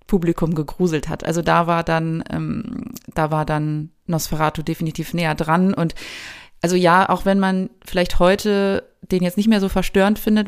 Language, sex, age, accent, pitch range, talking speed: German, female, 30-49, German, 165-200 Hz, 170 wpm